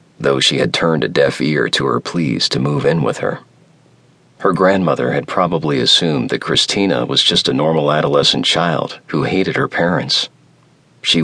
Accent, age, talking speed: American, 40-59, 175 wpm